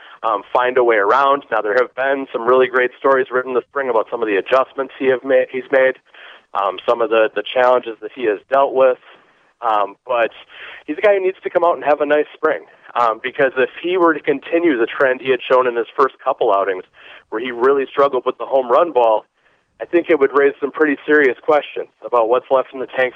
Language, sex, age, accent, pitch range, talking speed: English, male, 30-49, American, 125-205 Hz, 240 wpm